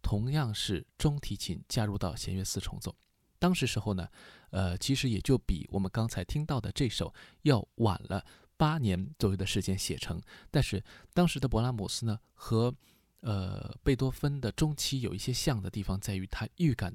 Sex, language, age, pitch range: male, Chinese, 20-39, 95-120 Hz